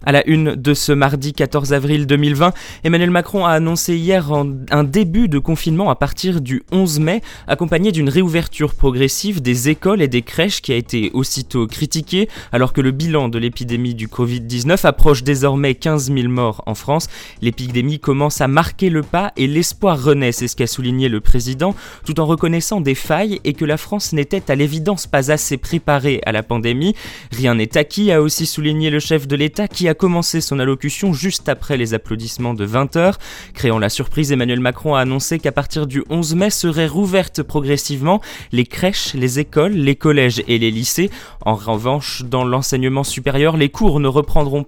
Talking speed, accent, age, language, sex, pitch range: 190 wpm, French, 20-39, French, male, 125-165 Hz